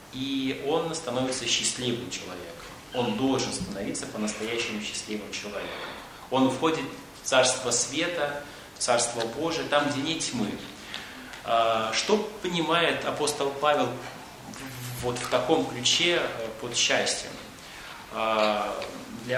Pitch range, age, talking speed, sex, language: 120-155 Hz, 20-39, 105 wpm, male, Russian